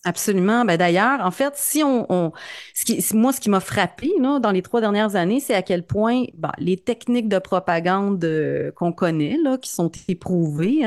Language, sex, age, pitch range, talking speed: French, female, 30-49, 170-235 Hz, 200 wpm